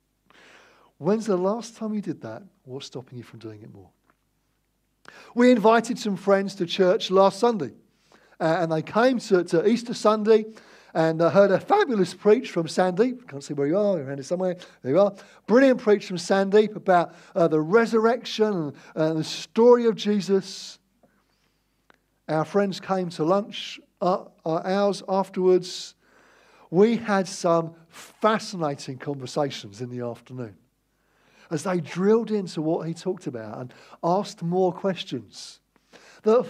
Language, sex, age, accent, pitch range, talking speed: English, male, 50-69, British, 160-220 Hz, 155 wpm